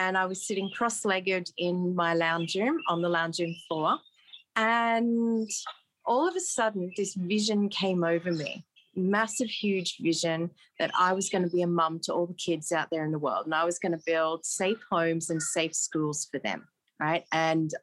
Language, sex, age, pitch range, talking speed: English, female, 30-49, 165-200 Hz, 200 wpm